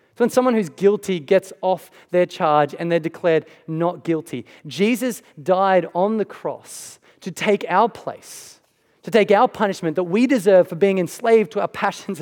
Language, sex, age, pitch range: English, male, 30-49, 170-215 Hz